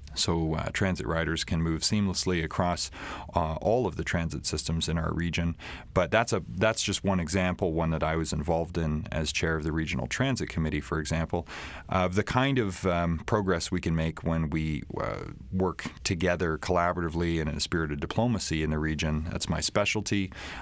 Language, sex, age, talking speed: English, male, 30-49, 190 wpm